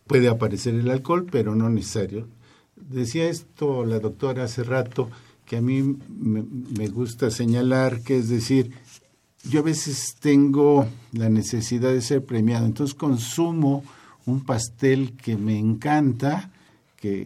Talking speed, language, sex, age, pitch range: 140 wpm, Spanish, male, 50-69, 105-135 Hz